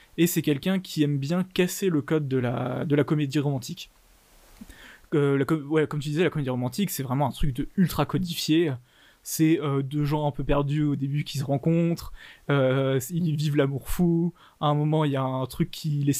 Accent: French